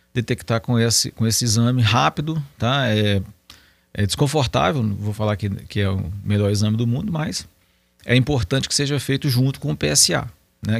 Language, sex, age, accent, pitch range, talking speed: Portuguese, male, 40-59, Brazilian, 105-130 Hz, 185 wpm